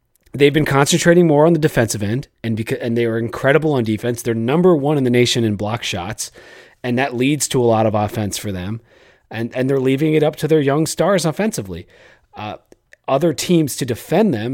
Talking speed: 215 wpm